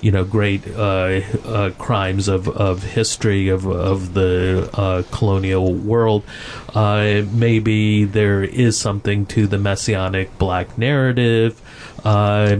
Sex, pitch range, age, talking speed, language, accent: male, 100-120 Hz, 40-59, 125 wpm, English, American